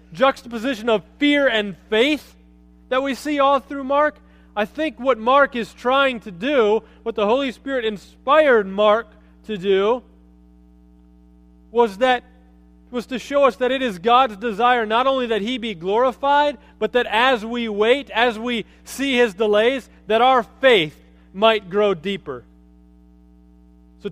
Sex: male